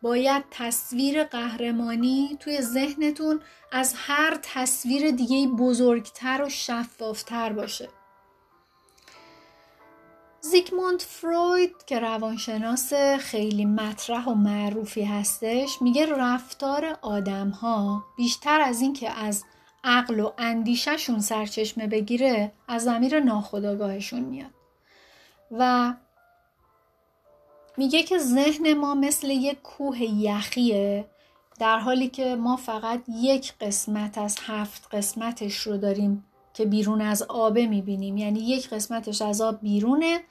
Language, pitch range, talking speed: Persian, 215-265 Hz, 105 wpm